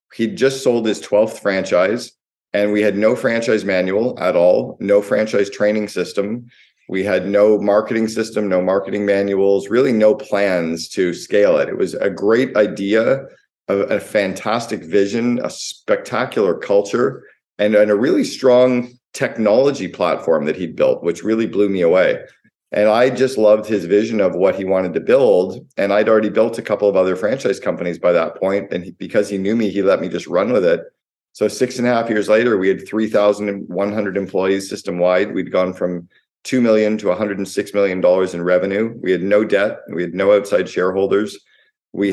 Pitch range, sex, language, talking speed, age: 100-115 Hz, male, English, 185 wpm, 40-59